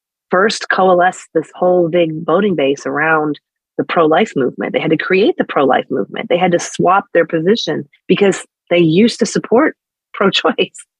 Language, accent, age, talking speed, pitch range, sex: English, American, 30-49, 165 wpm, 145-190 Hz, female